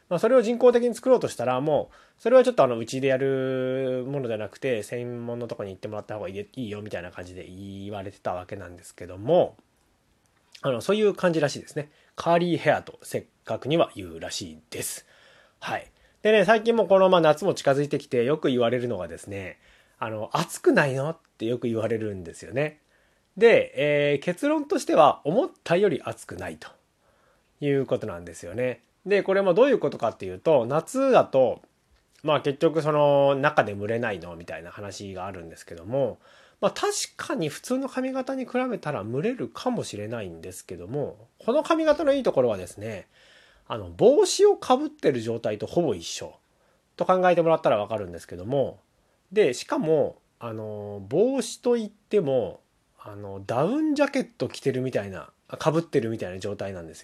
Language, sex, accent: Japanese, male, native